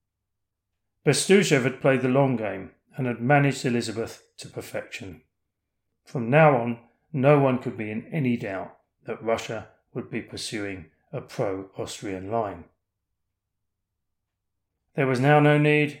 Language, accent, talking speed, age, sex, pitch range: English, British, 130 wpm, 40-59, male, 100-140 Hz